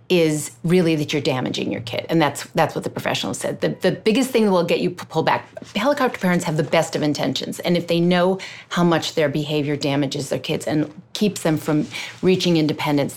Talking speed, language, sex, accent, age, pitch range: 220 wpm, English, female, American, 40-59, 155-210 Hz